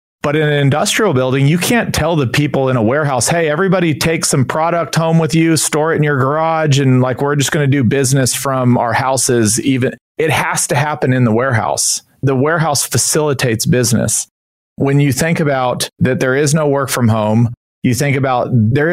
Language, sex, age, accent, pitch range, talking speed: English, male, 40-59, American, 115-145 Hz, 205 wpm